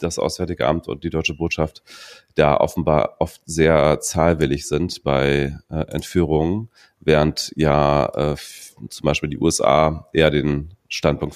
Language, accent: German, German